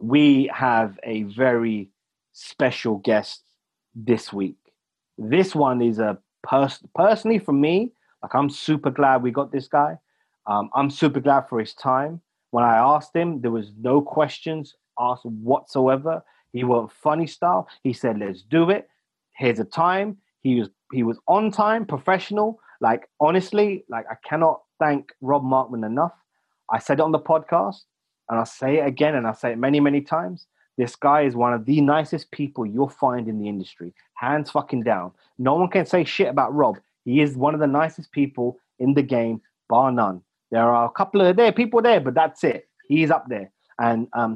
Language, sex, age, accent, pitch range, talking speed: English, male, 30-49, British, 120-155 Hz, 185 wpm